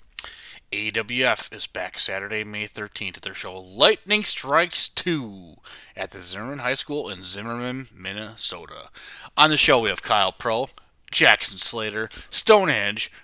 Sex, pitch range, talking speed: male, 110-140 Hz, 135 wpm